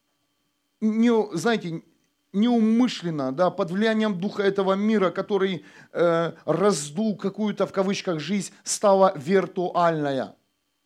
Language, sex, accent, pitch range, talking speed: Russian, male, native, 135-205 Hz, 90 wpm